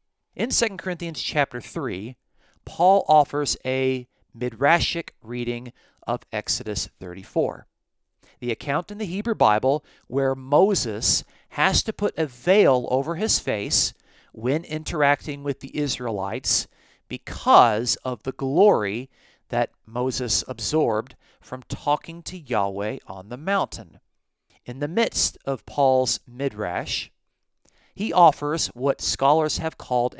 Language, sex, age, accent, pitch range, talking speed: English, male, 40-59, American, 115-145 Hz, 120 wpm